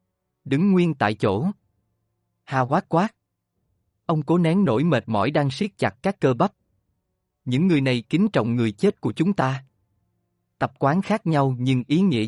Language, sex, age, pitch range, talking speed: Vietnamese, male, 20-39, 110-165 Hz, 175 wpm